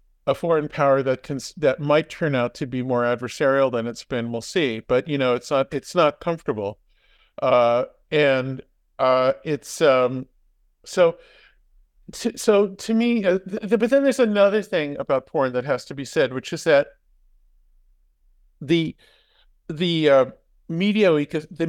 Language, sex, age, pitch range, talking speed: Hebrew, male, 50-69, 125-165 Hz, 165 wpm